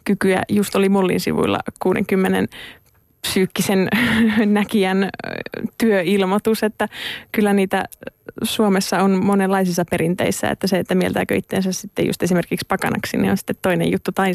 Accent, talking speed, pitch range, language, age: native, 130 wpm, 185-210 Hz, Finnish, 20-39